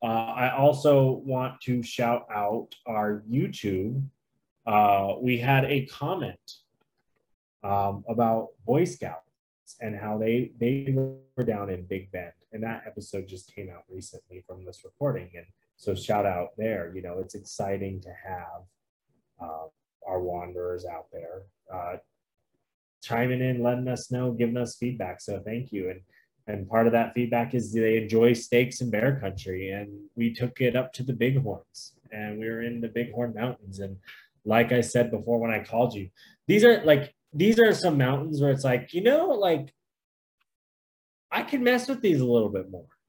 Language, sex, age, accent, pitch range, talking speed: English, male, 20-39, American, 105-130 Hz, 175 wpm